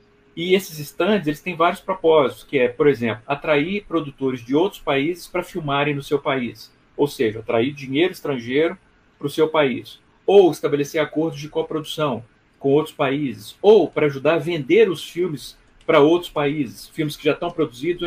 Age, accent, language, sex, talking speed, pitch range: 40-59, Brazilian, Portuguese, male, 175 wpm, 135-180 Hz